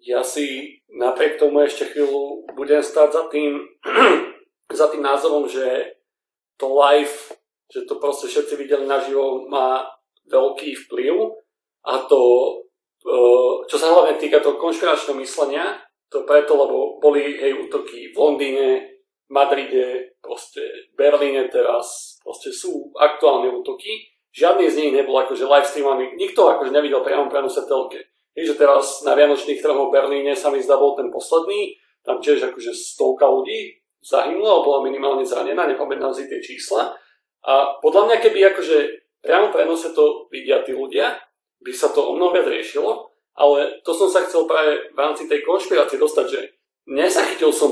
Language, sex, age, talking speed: Slovak, male, 40-59, 150 wpm